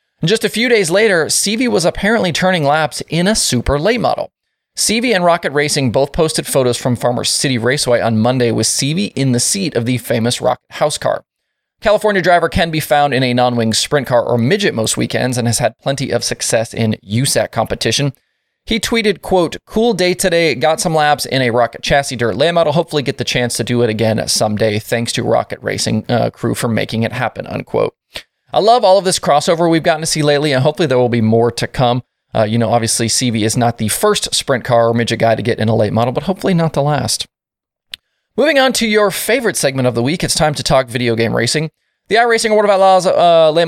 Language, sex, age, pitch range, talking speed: English, male, 20-39, 120-170 Hz, 230 wpm